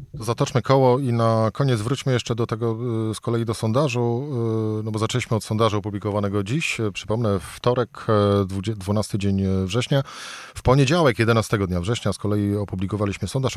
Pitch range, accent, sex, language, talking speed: 105-125 Hz, native, male, Polish, 150 wpm